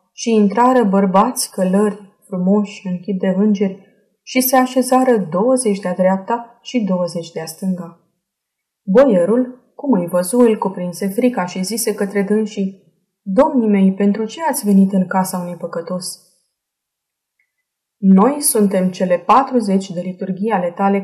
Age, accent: 20-39, native